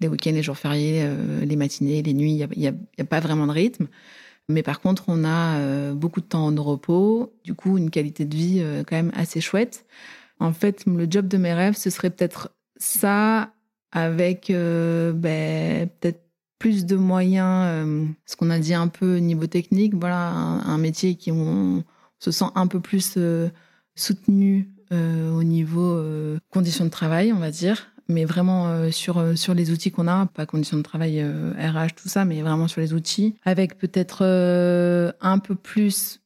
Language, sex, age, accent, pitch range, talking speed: French, female, 30-49, French, 155-185 Hz, 195 wpm